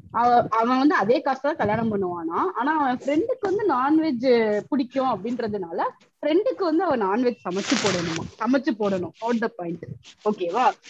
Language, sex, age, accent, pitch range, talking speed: Tamil, female, 20-39, native, 205-315 Hz, 120 wpm